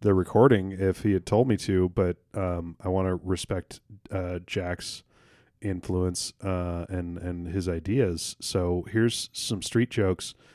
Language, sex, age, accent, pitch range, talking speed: English, male, 30-49, American, 90-115 Hz, 155 wpm